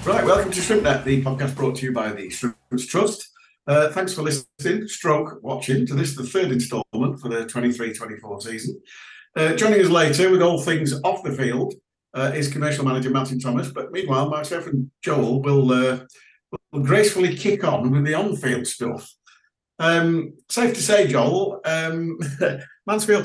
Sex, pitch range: male, 130-165 Hz